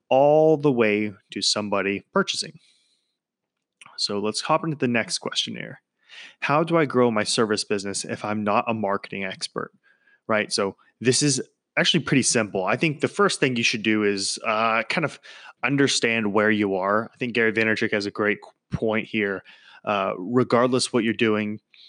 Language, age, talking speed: English, 20-39, 175 wpm